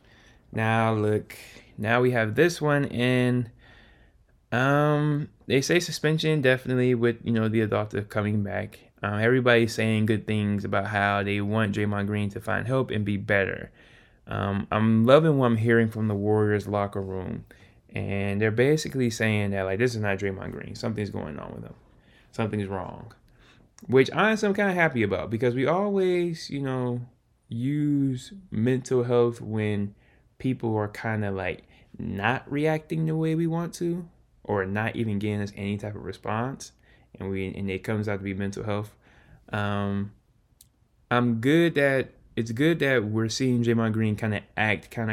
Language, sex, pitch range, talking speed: English, male, 105-125 Hz, 170 wpm